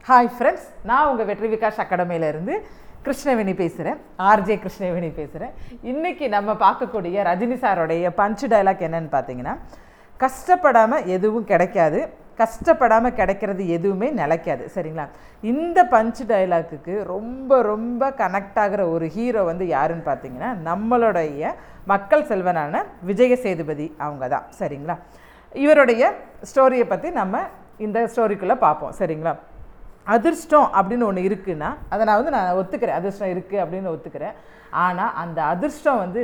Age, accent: 40-59, native